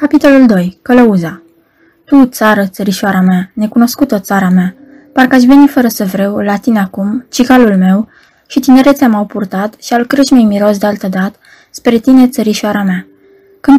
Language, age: Romanian, 20-39